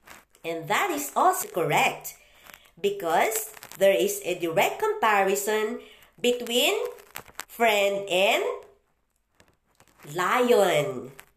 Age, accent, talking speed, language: 40-59, Filipino, 80 wpm, English